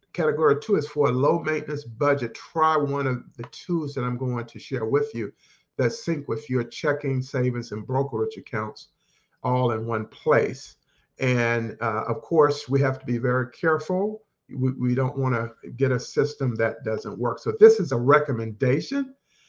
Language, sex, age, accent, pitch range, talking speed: English, male, 50-69, American, 120-150 Hz, 180 wpm